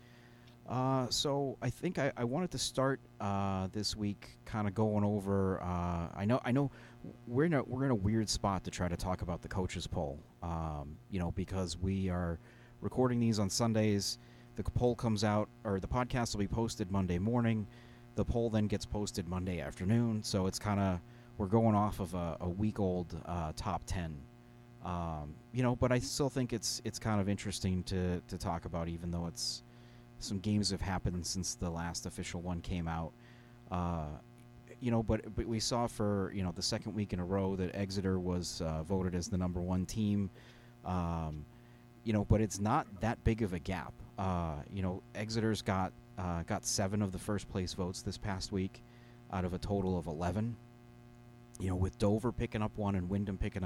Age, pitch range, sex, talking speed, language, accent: 30-49, 90-120 Hz, male, 200 wpm, English, American